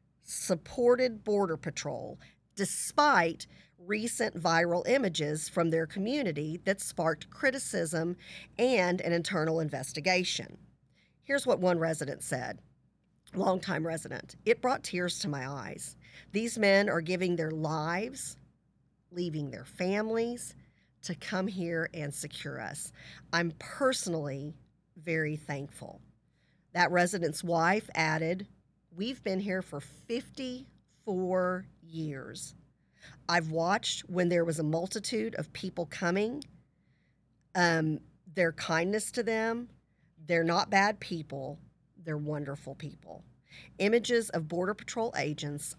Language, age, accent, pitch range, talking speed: English, 50-69, American, 160-195 Hz, 115 wpm